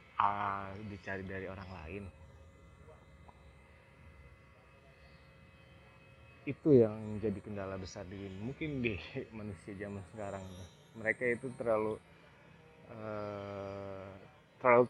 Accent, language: native, Indonesian